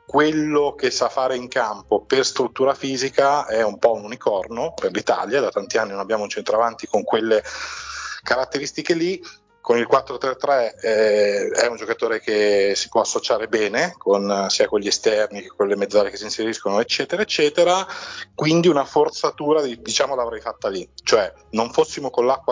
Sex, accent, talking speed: male, native, 180 wpm